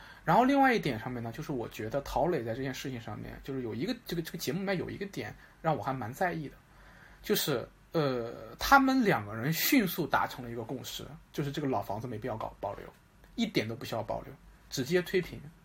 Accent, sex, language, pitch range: native, male, Chinese, 120-180 Hz